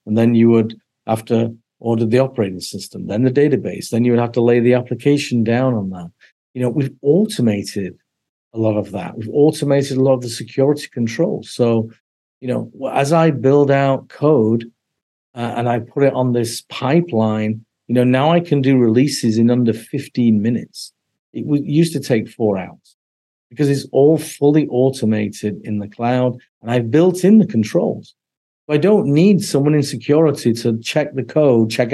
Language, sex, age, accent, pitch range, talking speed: English, male, 50-69, British, 115-140 Hz, 185 wpm